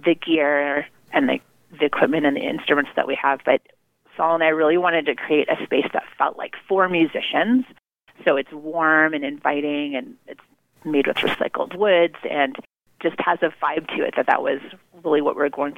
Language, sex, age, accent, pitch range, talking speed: English, female, 30-49, American, 145-175 Hz, 200 wpm